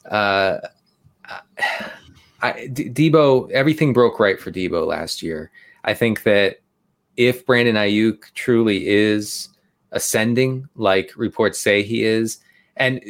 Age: 30-49